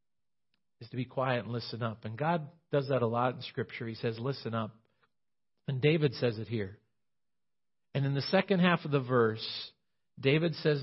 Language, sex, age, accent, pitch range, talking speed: English, male, 50-69, American, 125-175 Hz, 190 wpm